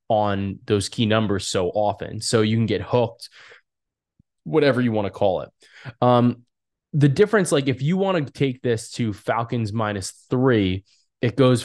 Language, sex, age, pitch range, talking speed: English, male, 20-39, 105-125 Hz, 170 wpm